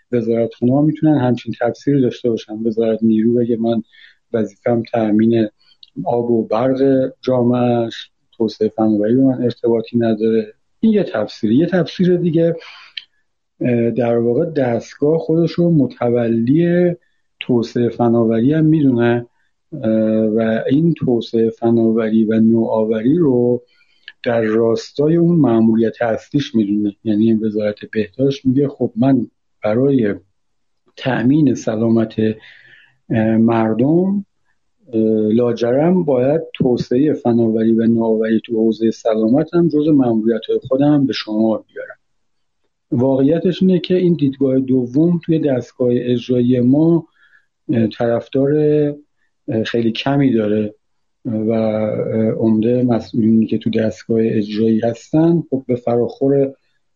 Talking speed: 105 wpm